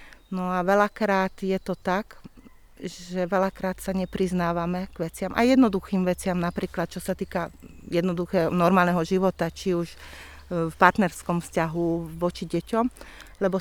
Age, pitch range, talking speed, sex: 40-59, 175-200 Hz, 130 wpm, female